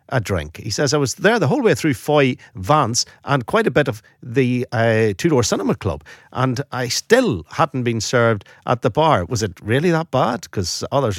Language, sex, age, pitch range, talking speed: English, male, 50-69, 115-160 Hz, 210 wpm